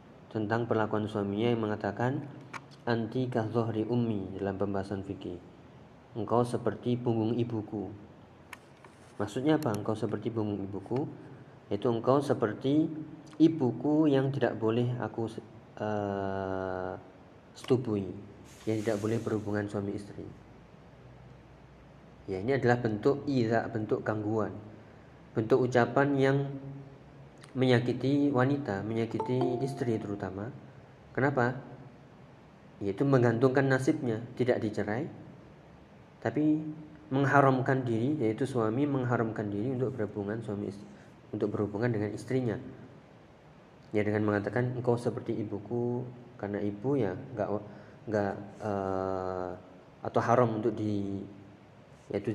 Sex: male